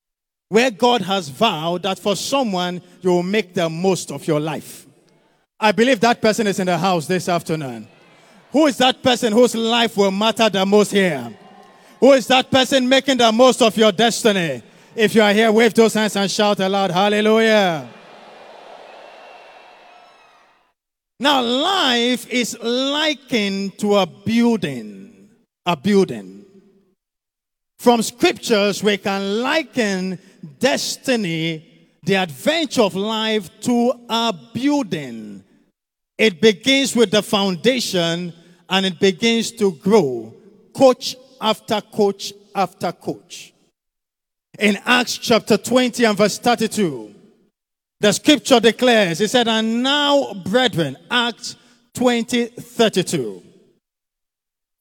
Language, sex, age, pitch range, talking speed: English, male, 50-69, 190-245 Hz, 125 wpm